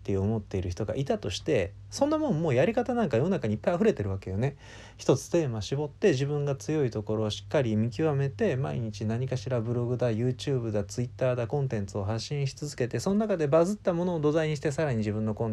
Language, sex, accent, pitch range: Japanese, male, native, 100-145 Hz